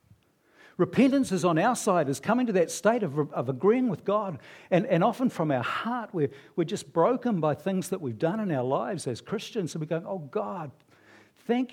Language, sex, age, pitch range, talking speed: English, male, 60-79, 155-220 Hz, 210 wpm